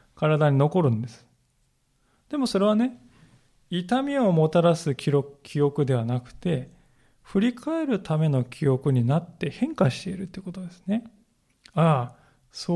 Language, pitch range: Japanese, 140-195 Hz